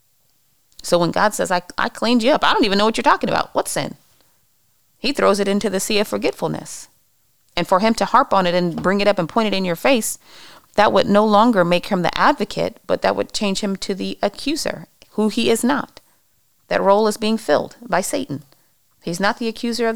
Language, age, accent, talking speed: English, 40-59, American, 230 wpm